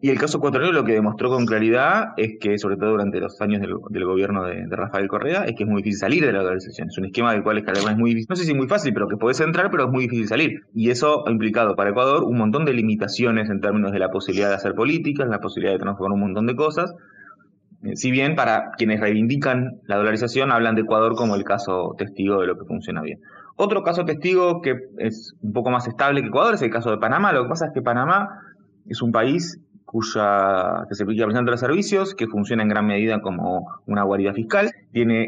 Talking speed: 245 wpm